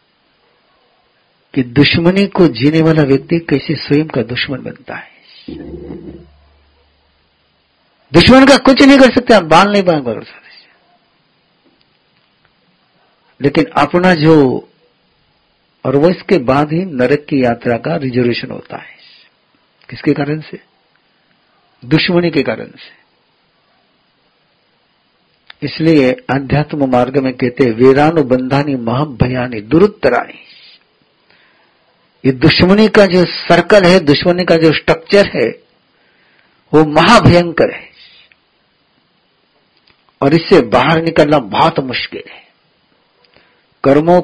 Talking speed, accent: 100 wpm, native